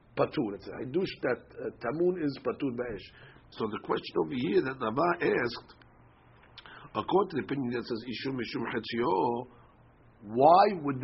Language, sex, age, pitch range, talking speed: English, male, 60-79, 115-160 Hz, 115 wpm